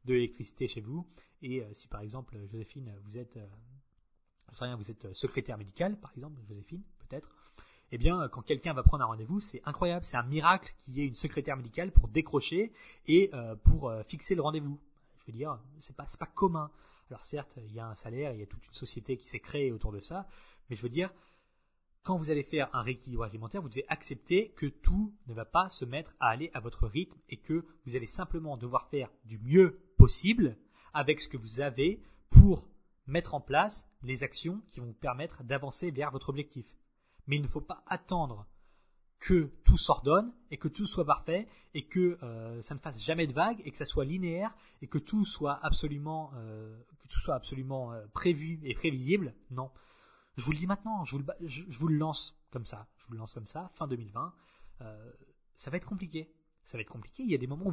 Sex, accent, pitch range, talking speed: male, French, 120-165 Hz, 215 wpm